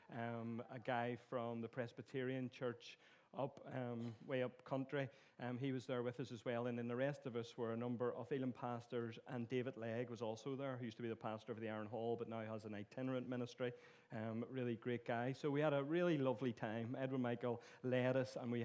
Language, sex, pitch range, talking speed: English, male, 120-135 Hz, 230 wpm